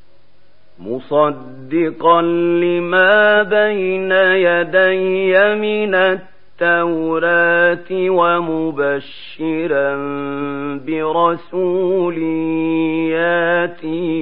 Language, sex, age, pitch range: Arabic, male, 50-69, 145-175 Hz